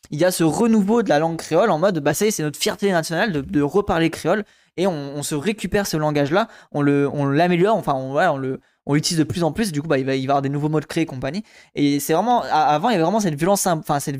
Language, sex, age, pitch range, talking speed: French, male, 20-39, 145-200 Hz, 300 wpm